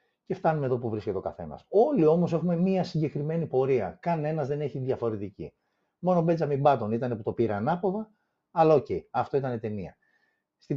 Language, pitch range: Greek, 105-160 Hz